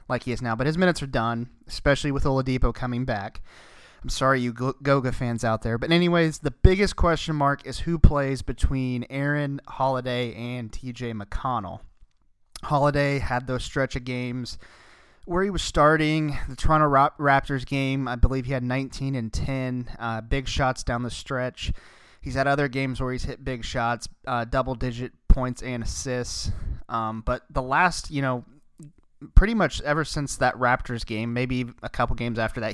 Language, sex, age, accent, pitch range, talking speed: English, male, 30-49, American, 120-145 Hz, 180 wpm